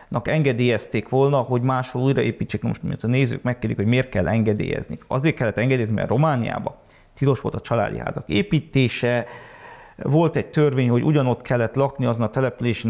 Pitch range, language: 120-150 Hz, Hungarian